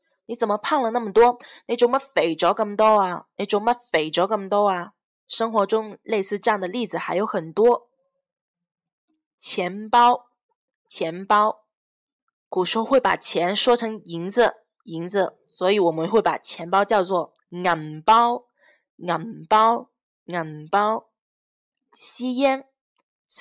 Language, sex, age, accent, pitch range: Chinese, female, 20-39, native, 195-245 Hz